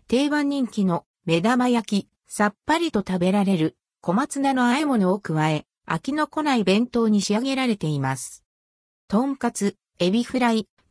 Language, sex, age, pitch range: Japanese, female, 50-69, 185-260 Hz